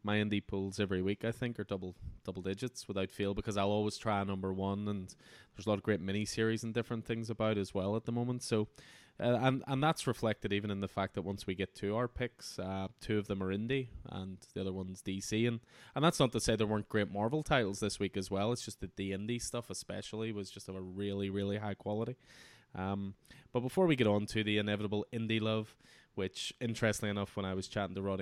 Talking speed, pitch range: 240 wpm, 100-115 Hz